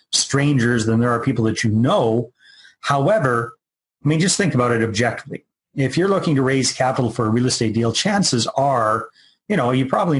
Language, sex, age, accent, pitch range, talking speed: English, male, 40-59, American, 120-150 Hz, 195 wpm